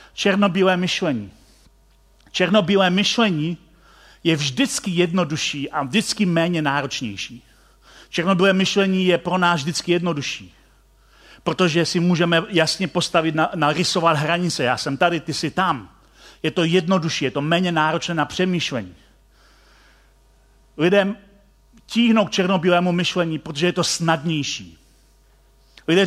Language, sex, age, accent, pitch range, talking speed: Czech, male, 40-59, native, 155-200 Hz, 115 wpm